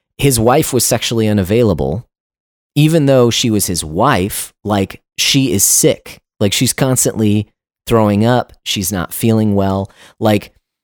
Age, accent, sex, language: 30-49, American, male, English